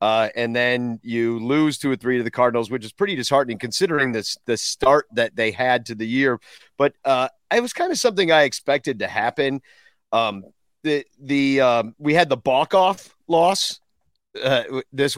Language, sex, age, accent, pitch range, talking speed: English, male, 40-59, American, 120-165 Hz, 190 wpm